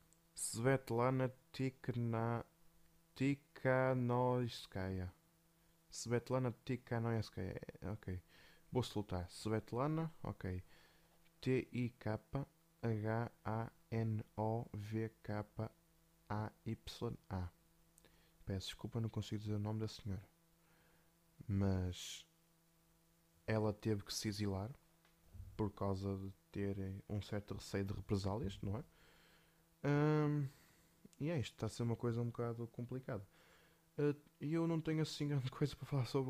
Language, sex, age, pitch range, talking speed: Portuguese, male, 20-39, 100-150 Hz, 100 wpm